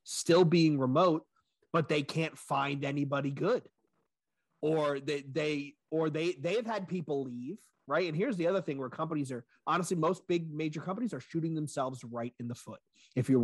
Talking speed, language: 185 wpm, English